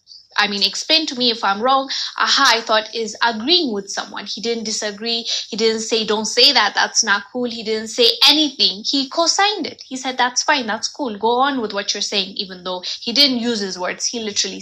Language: English